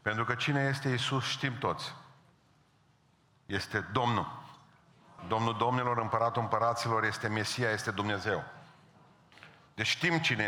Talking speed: 115 wpm